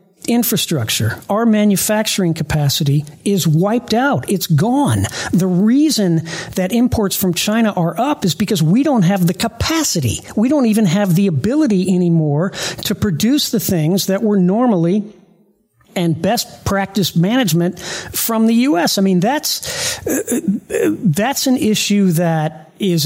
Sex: male